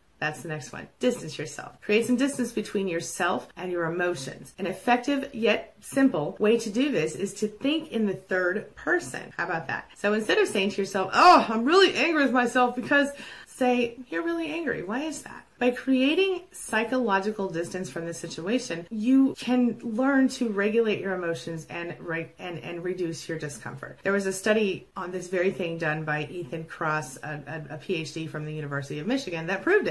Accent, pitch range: American, 175-250 Hz